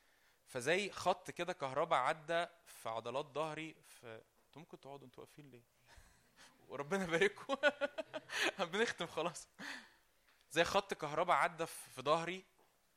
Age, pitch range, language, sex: 20-39, 130-175 Hz, Arabic, male